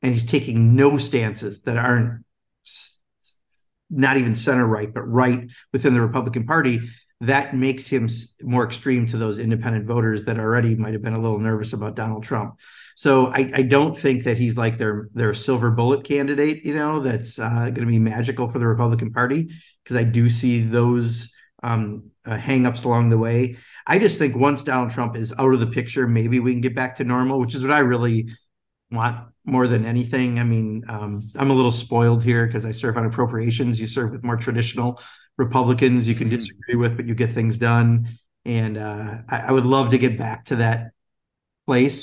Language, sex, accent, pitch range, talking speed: English, male, American, 115-130 Hz, 195 wpm